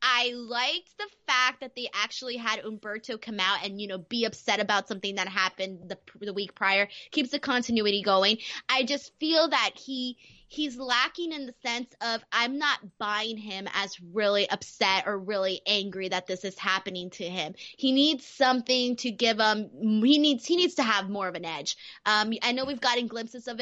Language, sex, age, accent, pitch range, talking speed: English, female, 20-39, American, 200-250 Hz, 200 wpm